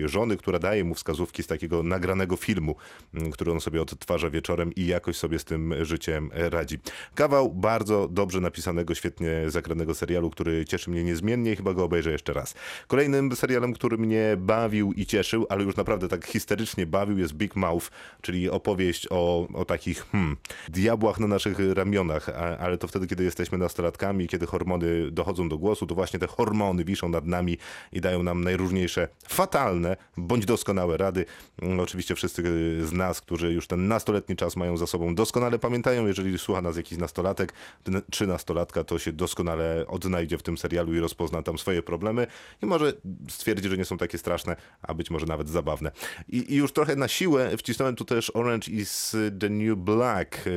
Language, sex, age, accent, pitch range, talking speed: Polish, male, 30-49, native, 85-105 Hz, 180 wpm